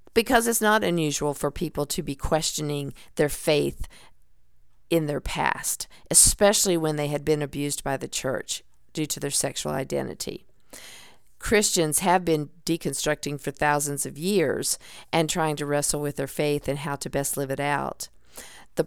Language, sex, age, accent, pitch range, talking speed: English, female, 50-69, American, 145-170 Hz, 160 wpm